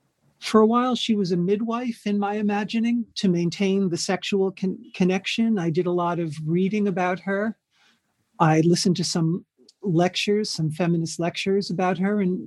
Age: 40-59